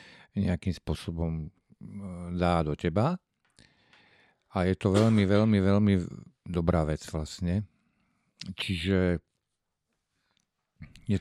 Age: 50-69